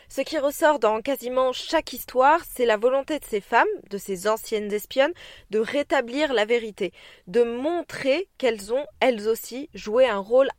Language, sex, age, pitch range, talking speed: French, female, 20-39, 215-280 Hz, 170 wpm